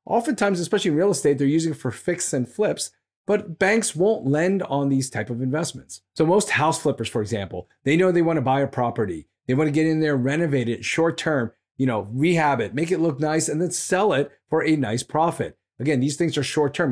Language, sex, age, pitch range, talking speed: English, male, 30-49, 120-160 Hz, 230 wpm